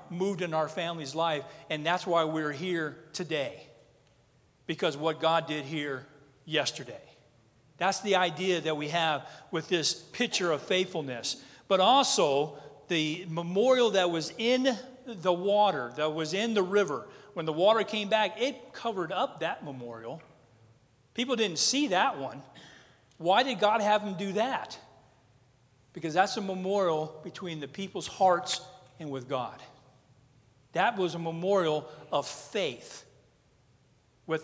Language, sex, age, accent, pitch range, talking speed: English, male, 40-59, American, 135-185 Hz, 145 wpm